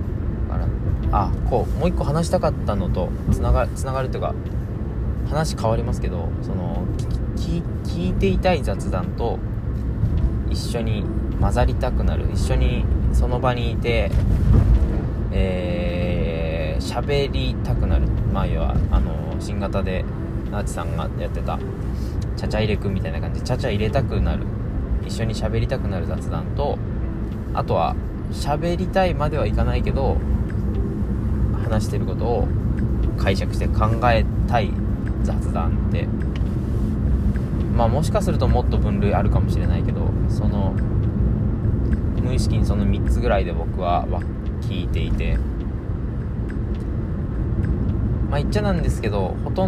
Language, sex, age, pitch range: Japanese, male, 20-39, 95-110 Hz